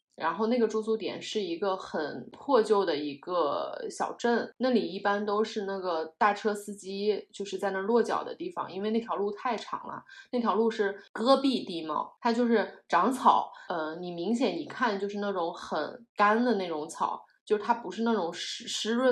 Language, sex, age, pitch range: Chinese, female, 20-39, 175-220 Hz